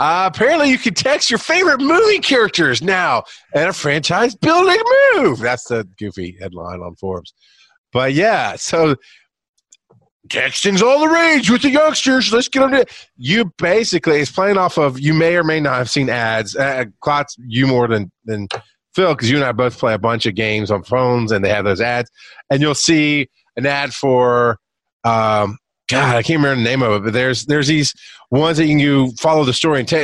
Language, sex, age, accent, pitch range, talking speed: English, male, 30-49, American, 120-185 Hz, 205 wpm